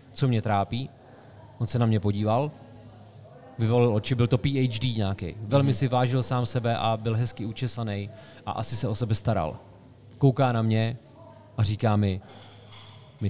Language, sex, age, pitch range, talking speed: Czech, male, 30-49, 110-125 Hz, 160 wpm